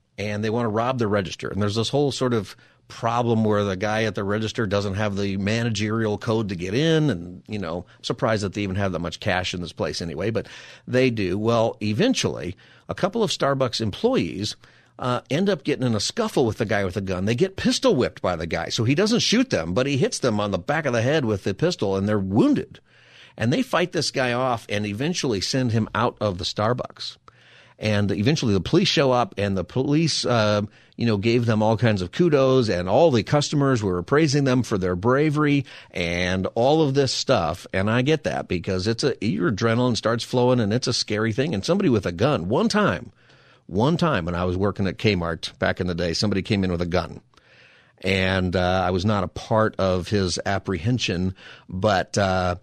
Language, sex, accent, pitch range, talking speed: English, male, American, 95-130 Hz, 220 wpm